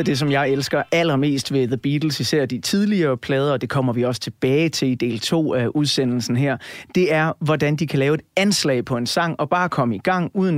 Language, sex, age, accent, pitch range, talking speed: Danish, male, 30-49, native, 130-165 Hz, 240 wpm